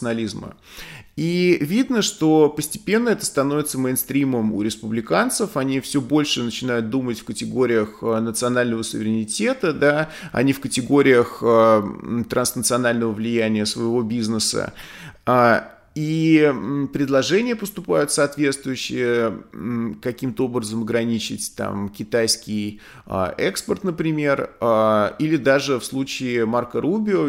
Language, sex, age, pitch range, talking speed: Russian, male, 20-39, 115-140 Hz, 90 wpm